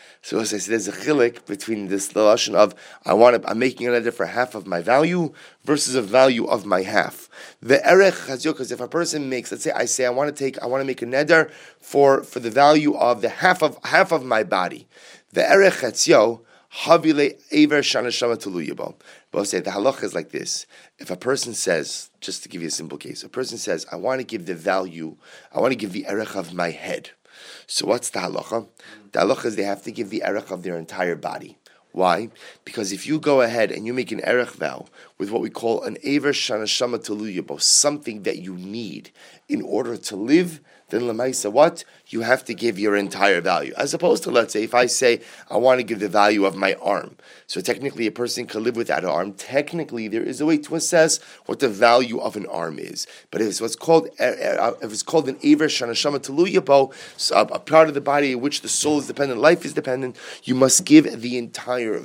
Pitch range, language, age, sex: 110-145 Hz, English, 30-49, male